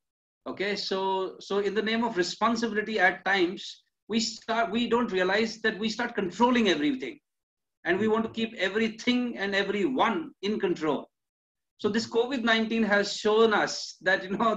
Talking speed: 170 wpm